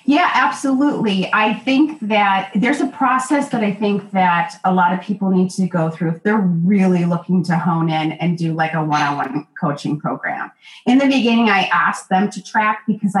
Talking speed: 195 wpm